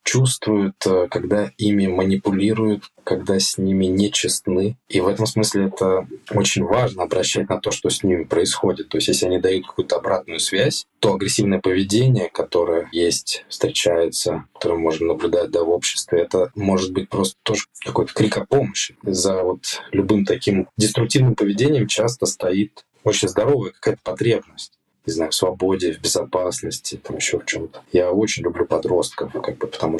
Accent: native